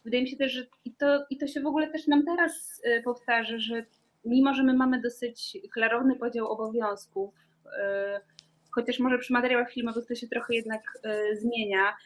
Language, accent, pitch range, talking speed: Polish, native, 210-250 Hz, 190 wpm